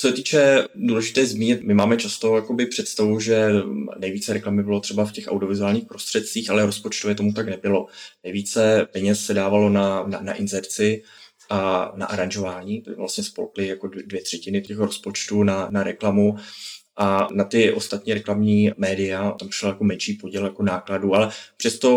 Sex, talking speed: male, 160 wpm